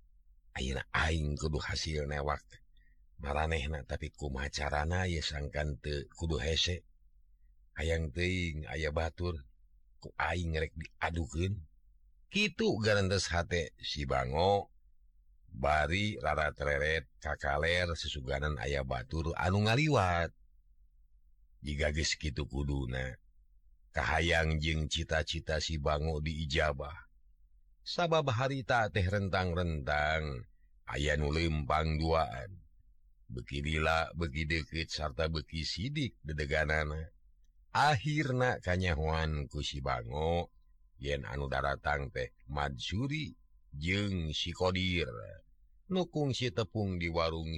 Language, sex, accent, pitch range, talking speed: Indonesian, male, native, 75-85 Hz, 95 wpm